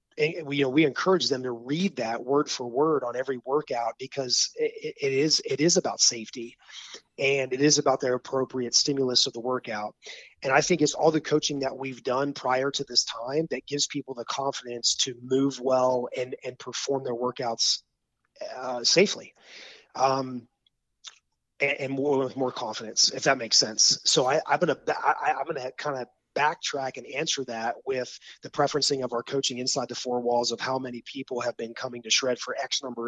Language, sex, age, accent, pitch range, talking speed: English, male, 30-49, American, 120-145 Hz, 200 wpm